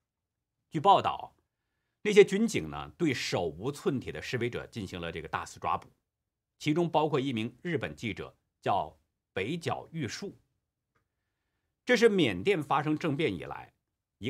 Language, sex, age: Chinese, male, 50-69